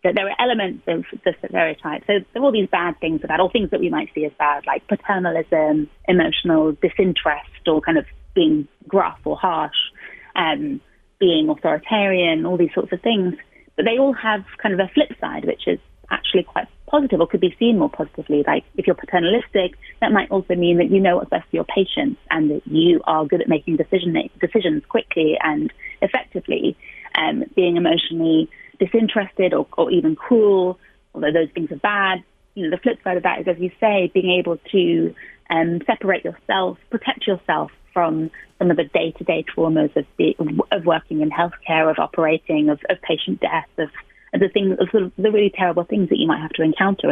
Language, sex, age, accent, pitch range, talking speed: English, female, 30-49, British, 165-220 Hz, 195 wpm